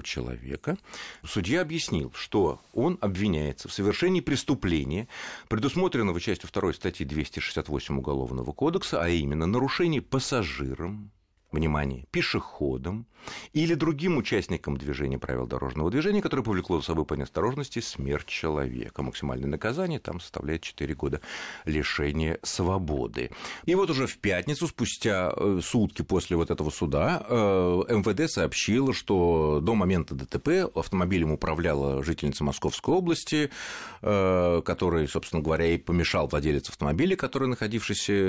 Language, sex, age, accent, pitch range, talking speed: Russian, male, 40-59, native, 75-115 Hz, 120 wpm